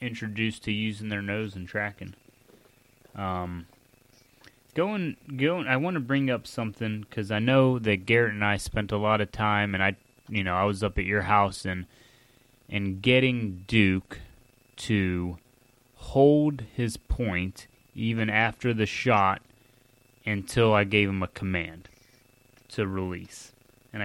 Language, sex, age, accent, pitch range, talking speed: English, male, 20-39, American, 95-125 Hz, 145 wpm